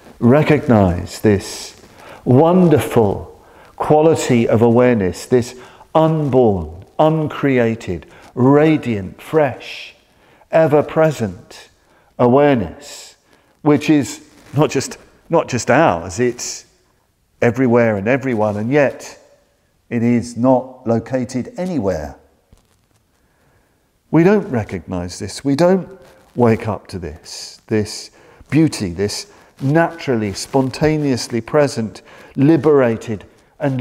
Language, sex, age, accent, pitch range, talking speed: English, male, 50-69, British, 110-150 Hz, 85 wpm